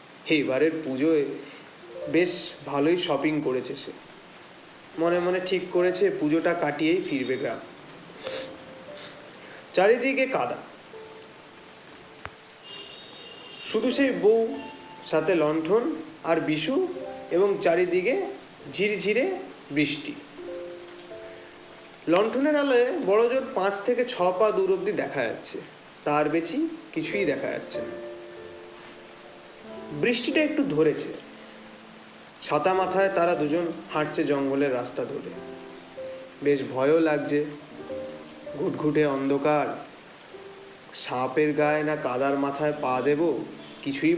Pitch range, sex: 145-215 Hz, male